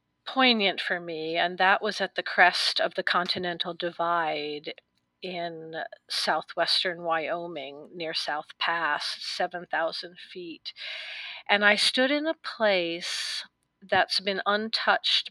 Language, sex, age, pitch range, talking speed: English, female, 40-59, 170-220 Hz, 120 wpm